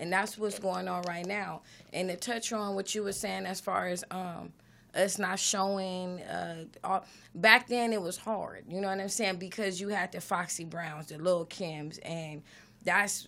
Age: 20-39